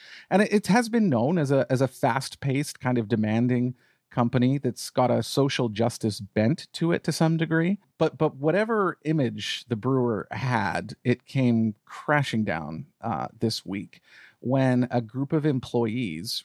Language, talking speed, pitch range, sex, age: English, 165 wpm, 115-145 Hz, male, 40-59